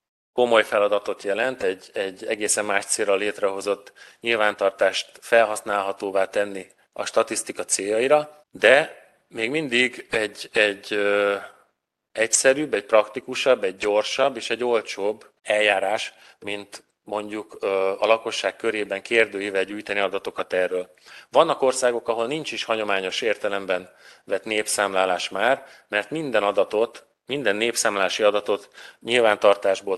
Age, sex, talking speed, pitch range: 30-49, male, 110 wpm, 100-125 Hz